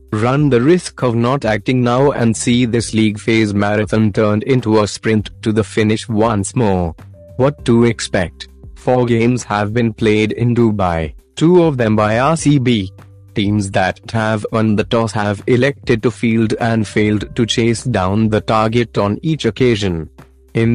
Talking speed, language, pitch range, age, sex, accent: 170 wpm, Hindi, 105-125 Hz, 30-49, male, native